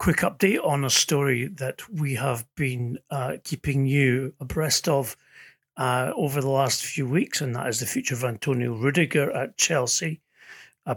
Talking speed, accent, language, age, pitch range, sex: 170 wpm, British, English, 40-59, 130-150 Hz, male